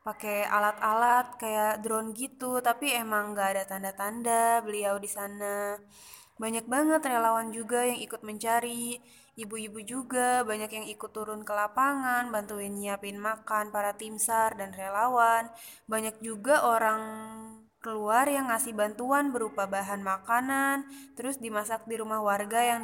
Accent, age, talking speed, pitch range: native, 20-39, 135 wpm, 210-245 Hz